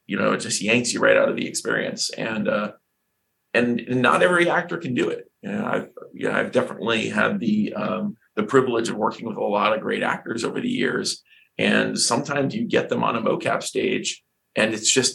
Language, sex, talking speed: English, male, 220 wpm